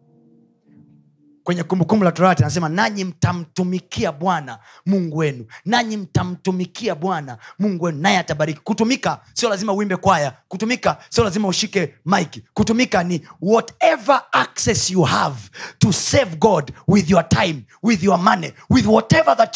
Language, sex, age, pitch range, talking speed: Swahili, male, 30-49, 170-250 Hz, 140 wpm